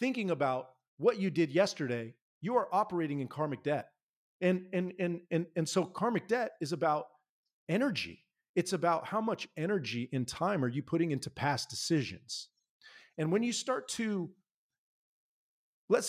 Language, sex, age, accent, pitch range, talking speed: English, male, 40-59, American, 130-175 Hz, 155 wpm